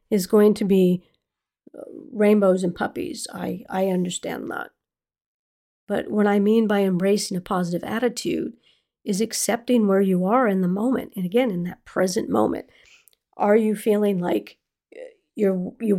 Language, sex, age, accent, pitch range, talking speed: English, female, 40-59, American, 190-230 Hz, 145 wpm